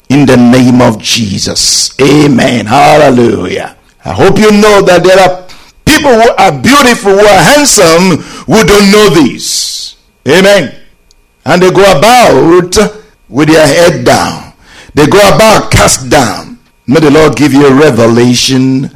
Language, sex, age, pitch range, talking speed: English, male, 50-69, 130-185 Hz, 145 wpm